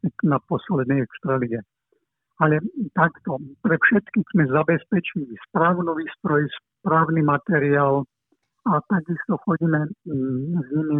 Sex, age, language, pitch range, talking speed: male, 60-79, Slovak, 145-175 Hz, 100 wpm